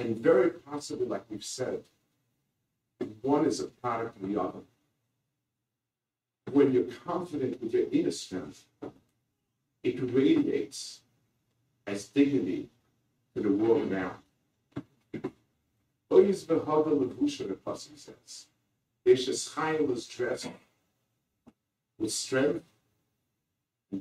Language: English